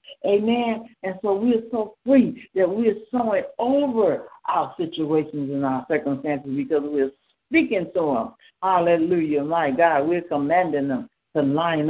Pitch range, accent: 165-225 Hz, American